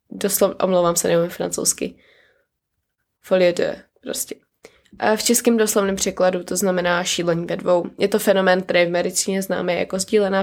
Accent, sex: native, female